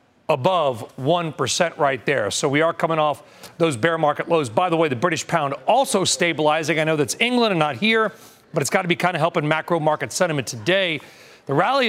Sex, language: male, English